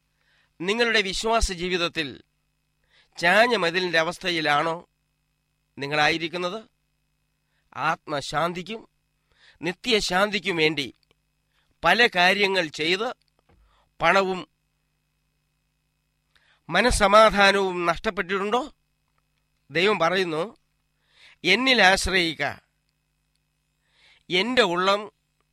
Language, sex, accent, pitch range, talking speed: Malayalam, male, native, 160-215 Hz, 50 wpm